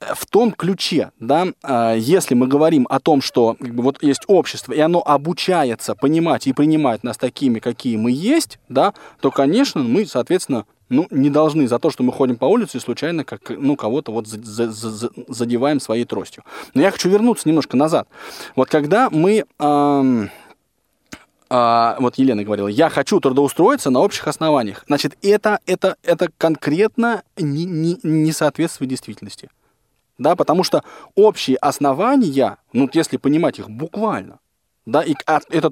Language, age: Russian, 20-39